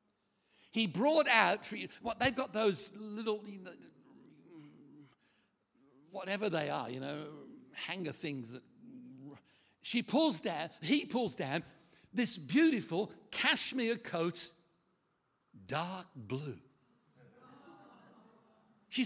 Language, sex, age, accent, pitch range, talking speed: English, male, 60-79, British, 145-225 Hz, 100 wpm